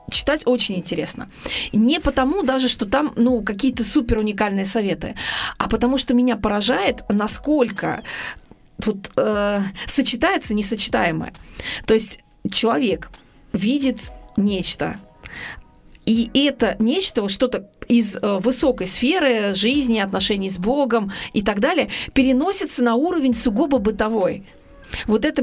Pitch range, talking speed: 215-265 Hz, 115 wpm